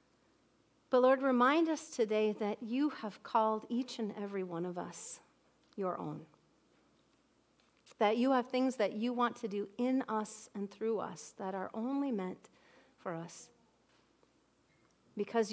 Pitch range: 185-230 Hz